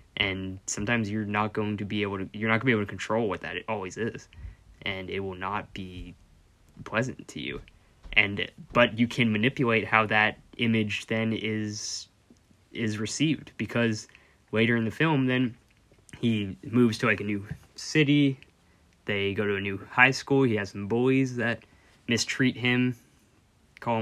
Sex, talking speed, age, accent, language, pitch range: male, 170 wpm, 10-29, American, English, 100-120 Hz